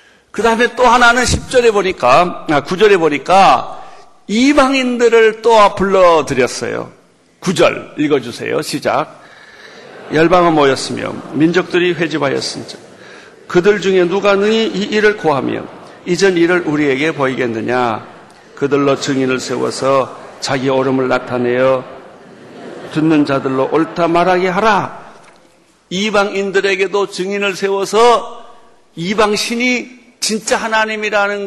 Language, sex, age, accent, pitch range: Korean, male, 50-69, native, 165-230 Hz